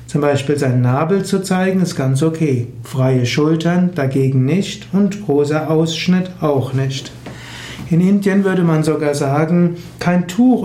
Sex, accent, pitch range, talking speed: male, German, 135-175 Hz, 145 wpm